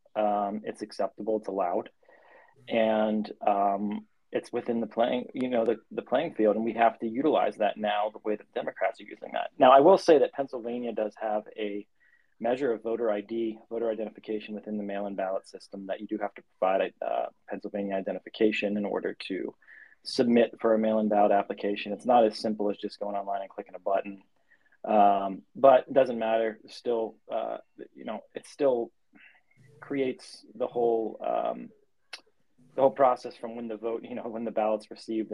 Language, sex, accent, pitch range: English, male, American, 105-120 Hz